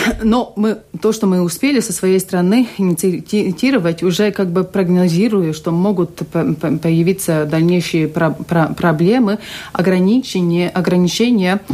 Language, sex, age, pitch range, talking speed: Russian, female, 40-59, 160-190 Hz, 100 wpm